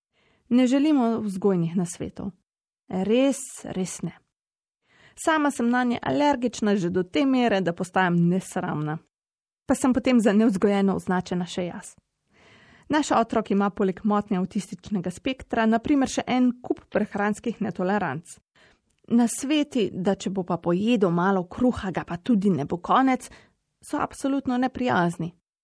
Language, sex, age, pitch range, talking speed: Italian, female, 30-49, 180-240 Hz, 130 wpm